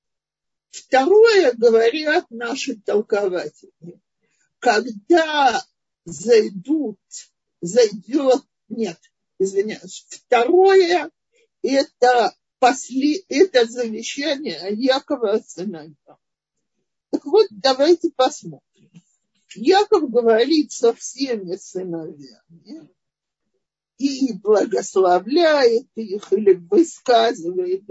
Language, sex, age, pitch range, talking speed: Russian, male, 50-69, 215-335 Hz, 65 wpm